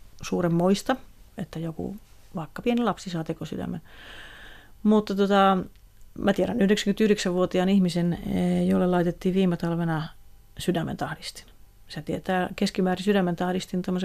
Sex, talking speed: female, 100 wpm